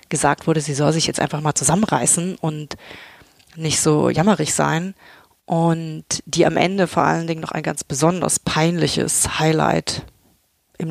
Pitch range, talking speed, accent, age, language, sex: 160-185 Hz, 155 wpm, German, 30-49, German, female